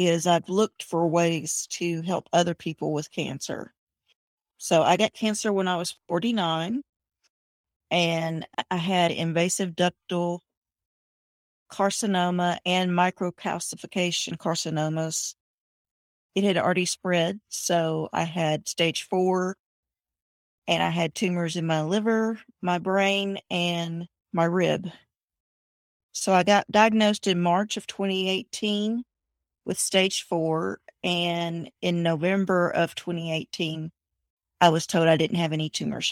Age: 40-59